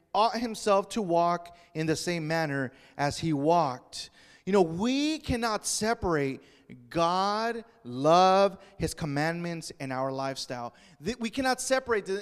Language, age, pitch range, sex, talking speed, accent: English, 30-49, 175-230 Hz, male, 130 wpm, American